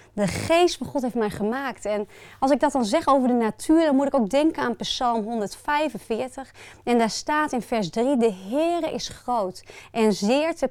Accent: Dutch